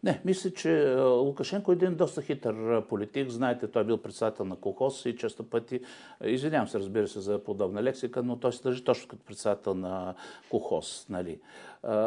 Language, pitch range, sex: Bulgarian, 105-130 Hz, male